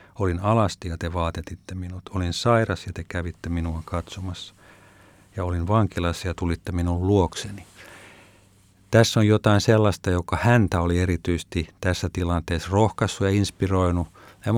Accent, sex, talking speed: native, male, 140 wpm